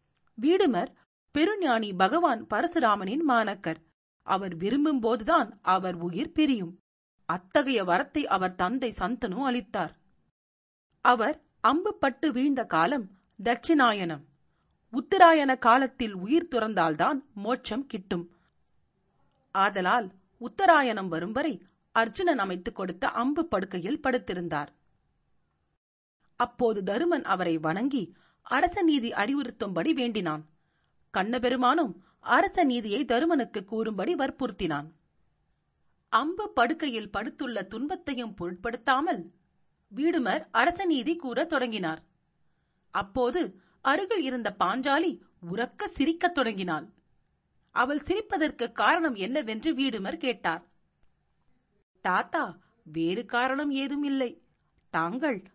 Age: 40-59